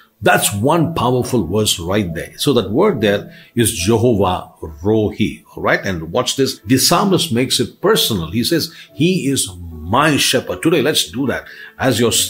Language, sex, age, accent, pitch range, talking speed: English, male, 50-69, Indian, 105-150 Hz, 170 wpm